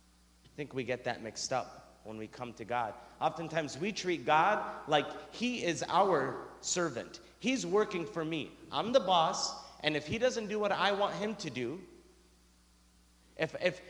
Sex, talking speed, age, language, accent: male, 175 wpm, 30-49, English, American